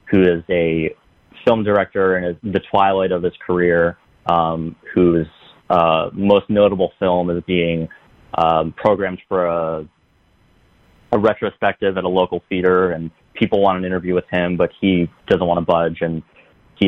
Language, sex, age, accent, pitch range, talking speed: English, male, 30-49, American, 85-95 Hz, 155 wpm